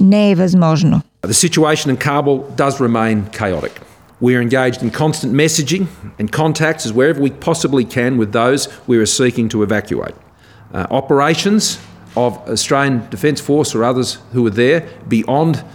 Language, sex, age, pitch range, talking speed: Bulgarian, male, 50-69, 120-205 Hz, 150 wpm